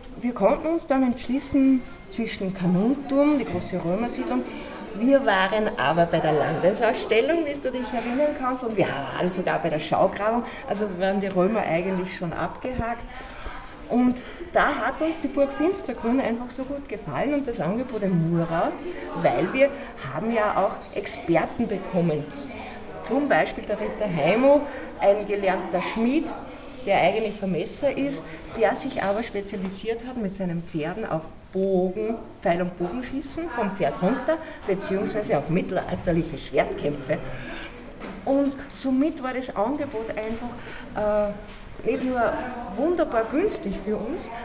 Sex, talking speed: female, 140 wpm